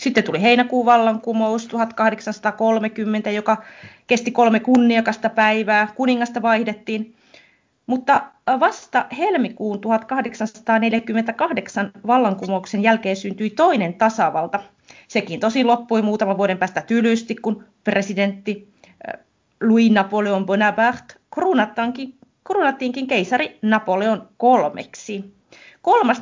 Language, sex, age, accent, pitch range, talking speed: Finnish, female, 30-49, native, 195-235 Hz, 85 wpm